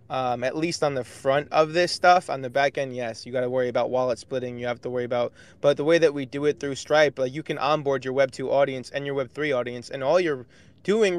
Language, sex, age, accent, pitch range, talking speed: English, male, 20-39, American, 125-155 Hz, 280 wpm